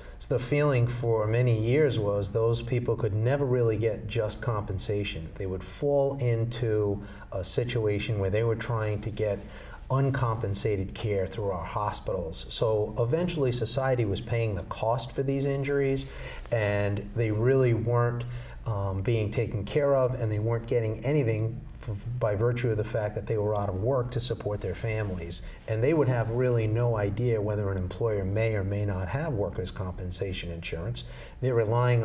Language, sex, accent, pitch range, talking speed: English, male, American, 100-120 Hz, 170 wpm